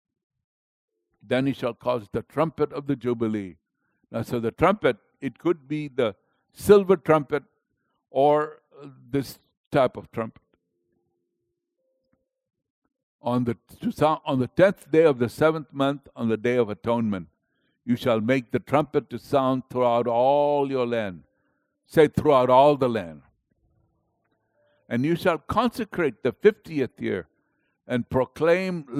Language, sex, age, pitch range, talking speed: English, male, 60-79, 115-160 Hz, 135 wpm